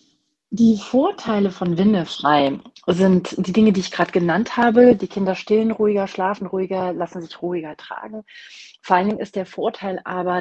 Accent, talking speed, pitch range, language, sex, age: German, 165 wpm, 175-220 Hz, German, female, 30-49